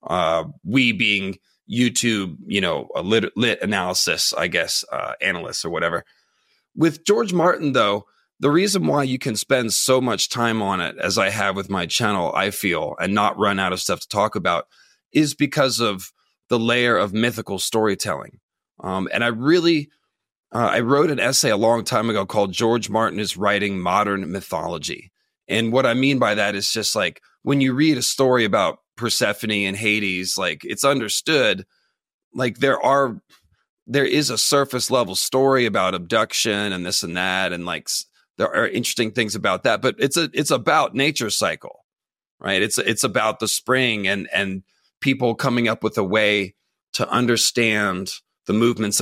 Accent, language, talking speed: American, English, 175 wpm